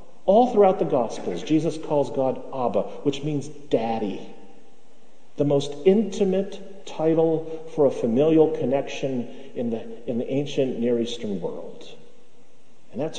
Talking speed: 125 wpm